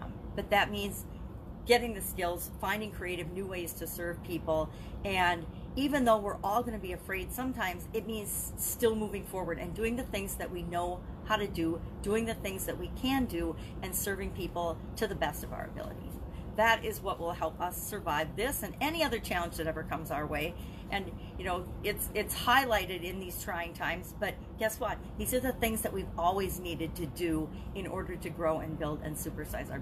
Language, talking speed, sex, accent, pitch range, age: English, 205 wpm, female, American, 170-220 Hz, 40-59